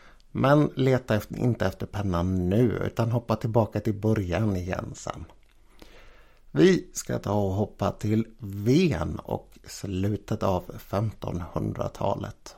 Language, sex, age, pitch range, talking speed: Swedish, male, 60-79, 100-130 Hz, 115 wpm